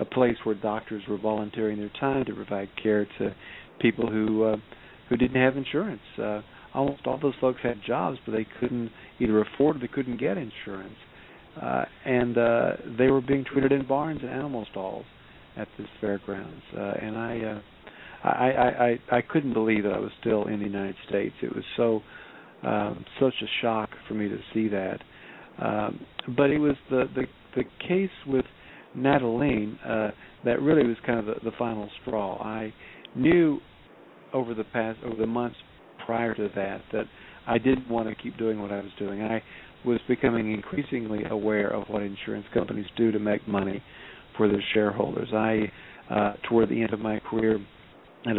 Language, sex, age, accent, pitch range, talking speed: English, male, 50-69, American, 105-120 Hz, 185 wpm